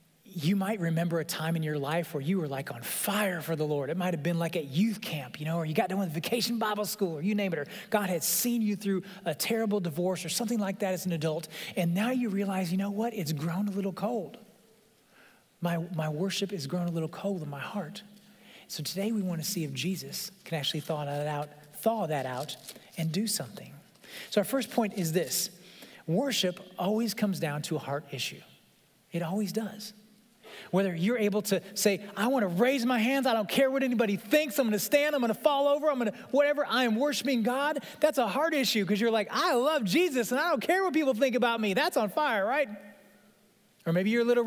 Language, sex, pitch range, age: English, male, 165-230 Hz, 30-49